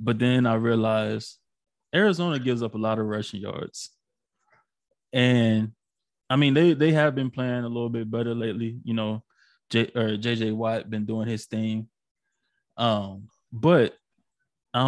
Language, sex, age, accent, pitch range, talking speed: English, male, 20-39, American, 110-135 Hz, 155 wpm